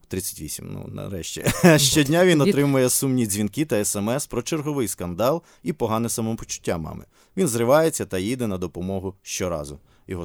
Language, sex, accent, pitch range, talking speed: Ukrainian, male, native, 95-125 Hz, 145 wpm